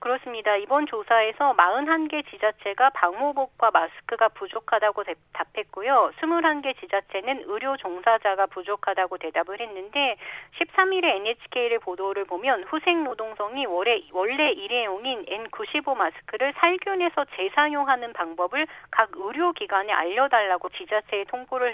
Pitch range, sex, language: 195-305 Hz, female, Korean